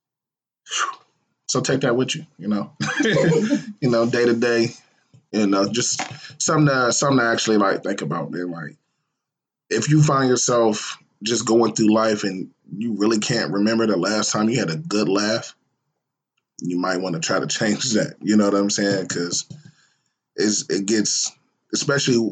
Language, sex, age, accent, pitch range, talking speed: English, male, 20-39, American, 100-120 Hz, 160 wpm